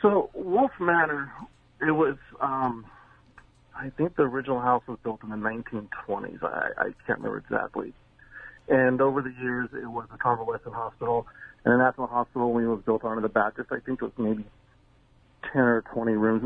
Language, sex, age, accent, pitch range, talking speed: English, male, 40-59, American, 120-140 Hz, 180 wpm